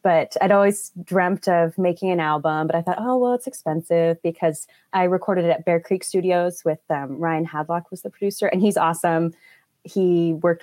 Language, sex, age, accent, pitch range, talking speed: English, female, 20-39, American, 160-190 Hz, 200 wpm